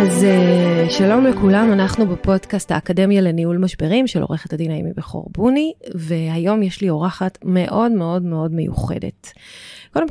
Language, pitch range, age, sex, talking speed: Hebrew, 170-205 Hz, 30-49, female, 135 wpm